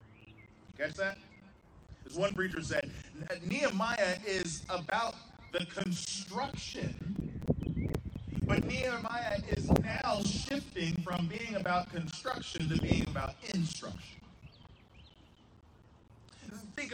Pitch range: 155-225 Hz